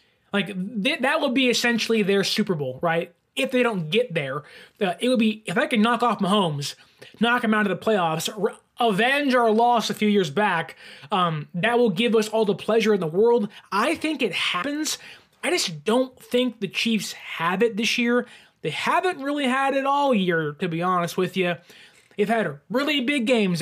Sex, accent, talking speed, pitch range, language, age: male, American, 200 wpm, 185-245 Hz, English, 20-39